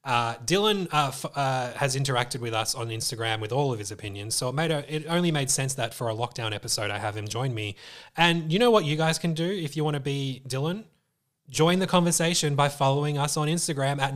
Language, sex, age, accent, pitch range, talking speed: English, male, 20-39, Australian, 125-165 Hz, 240 wpm